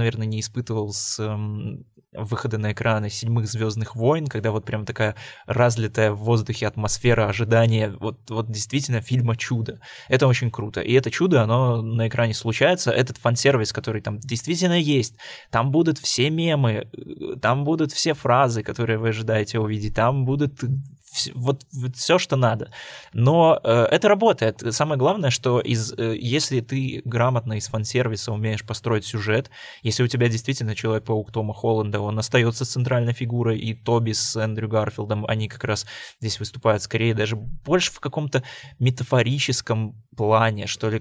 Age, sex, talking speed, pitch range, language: 20-39, male, 155 wpm, 110-130 Hz, Russian